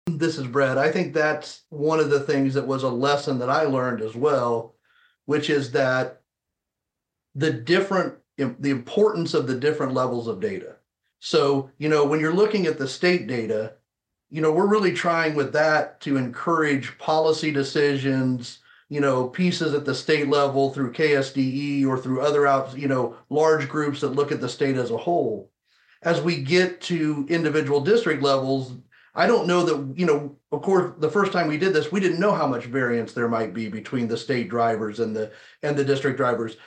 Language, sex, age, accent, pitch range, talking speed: English, male, 40-59, American, 130-160 Hz, 190 wpm